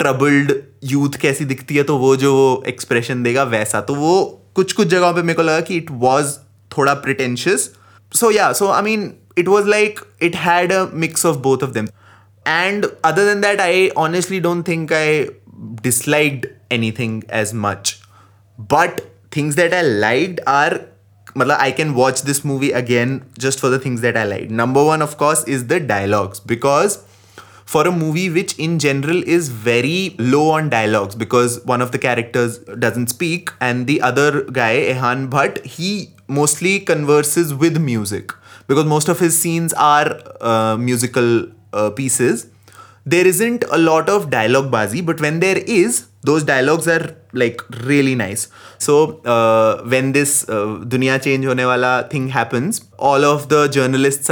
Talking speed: 150 wpm